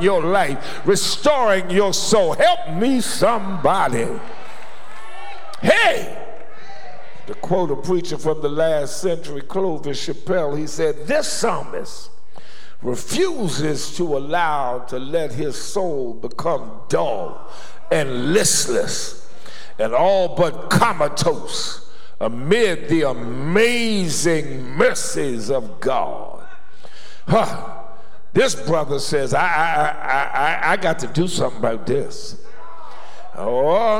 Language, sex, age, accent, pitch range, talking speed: English, male, 60-79, American, 165-275 Hz, 105 wpm